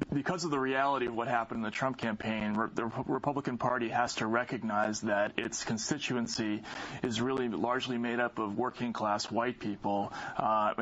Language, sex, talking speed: English, male, 170 wpm